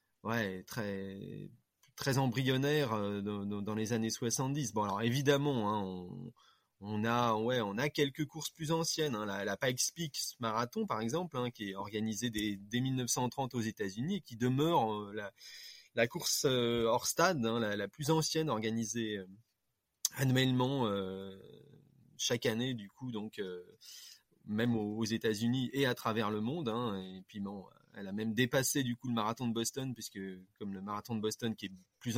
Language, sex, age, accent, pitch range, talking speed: French, male, 20-39, French, 105-130 Hz, 170 wpm